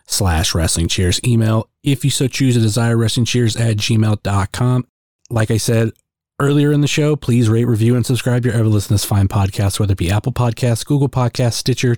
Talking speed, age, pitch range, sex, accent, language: 200 wpm, 30-49, 105-125 Hz, male, American, English